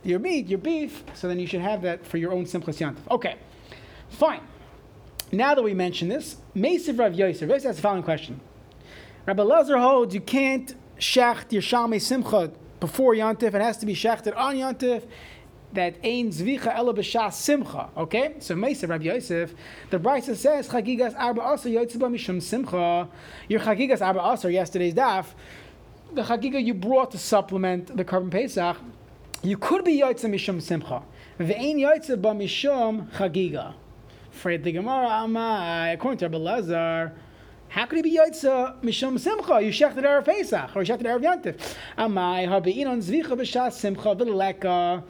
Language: English